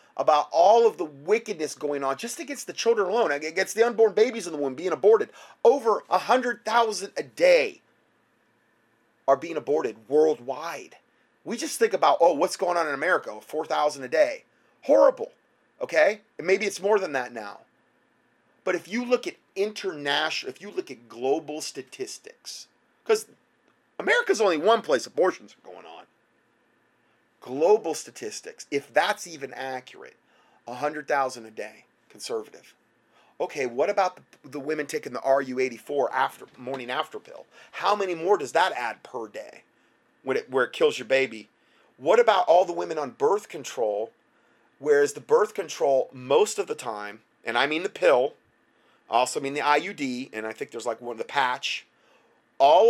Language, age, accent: English, 30-49, American